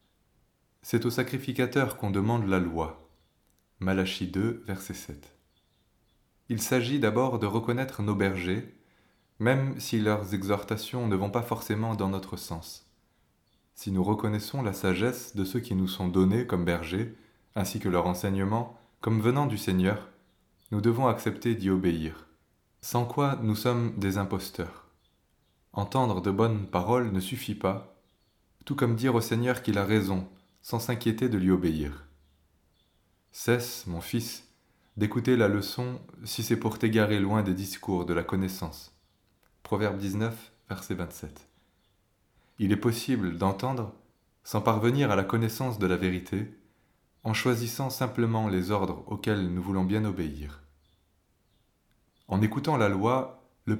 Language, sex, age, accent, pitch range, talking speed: French, male, 20-39, French, 95-115 Hz, 145 wpm